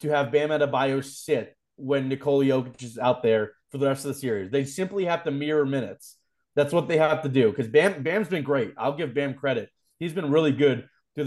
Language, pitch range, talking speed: English, 140-170 Hz, 245 wpm